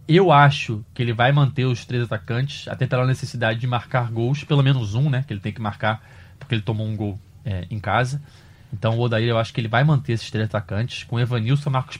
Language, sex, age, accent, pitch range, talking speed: Portuguese, male, 20-39, Brazilian, 115-145 Hz, 235 wpm